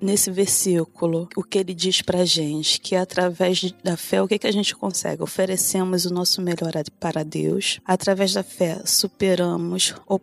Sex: female